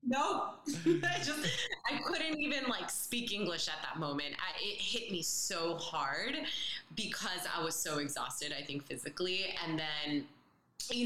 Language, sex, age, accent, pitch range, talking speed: English, female, 20-39, American, 150-185 Hz, 150 wpm